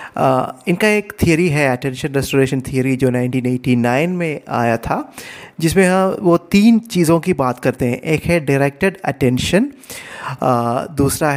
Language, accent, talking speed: Hindi, native, 135 wpm